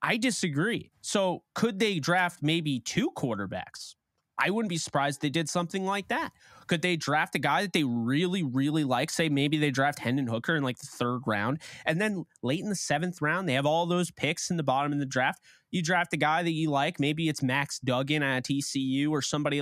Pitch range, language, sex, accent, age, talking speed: 135-175 Hz, English, male, American, 20-39, 225 wpm